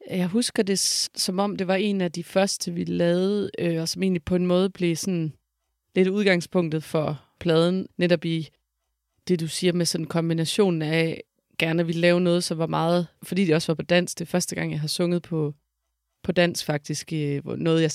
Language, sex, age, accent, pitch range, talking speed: Danish, female, 30-49, native, 155-180 Hz, 210 wpm